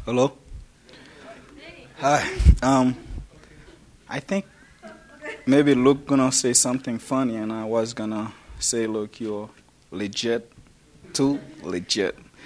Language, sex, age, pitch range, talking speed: English, male, 20-39, 110-130 Hz, 105 wpm